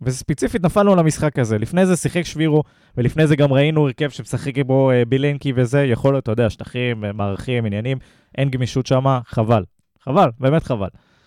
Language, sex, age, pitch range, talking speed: Hebrew, male, 20-39, 115-165 Hz, 170 wpm